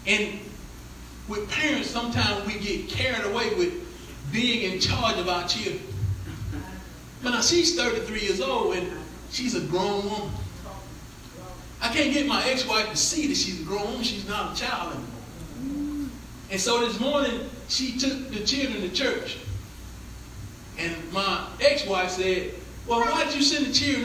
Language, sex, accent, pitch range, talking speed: English, male, American, 175-260 Hz, 155 wpm